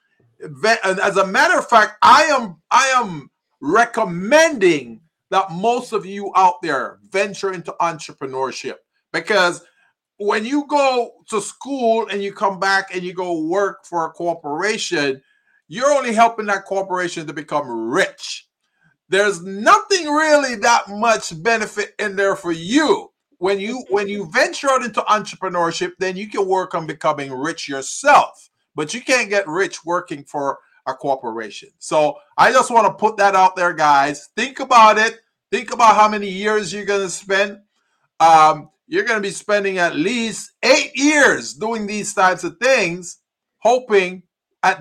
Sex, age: male, 50-69